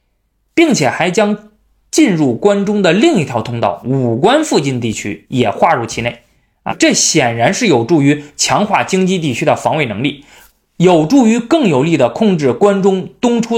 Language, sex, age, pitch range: Chinese, male, 20-39, 125-205 Hz